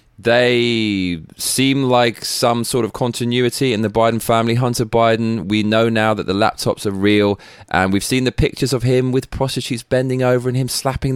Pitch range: 100-130 Hz